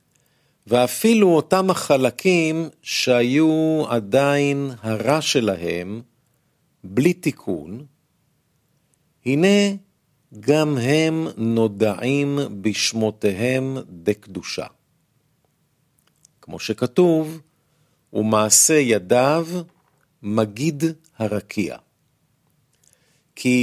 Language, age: Hebrew, 50-69